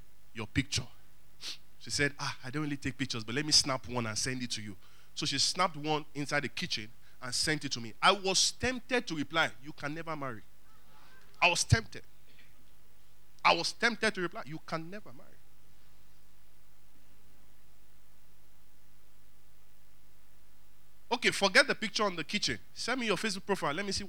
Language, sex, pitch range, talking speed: English, male, 130-195 Hz, 170 wpm